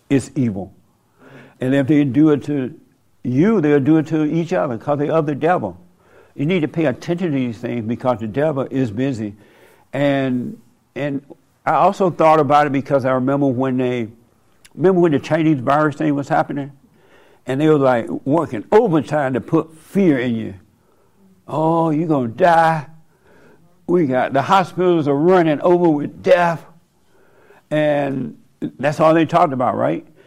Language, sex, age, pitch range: English, male, 60-79, 130-160 Hz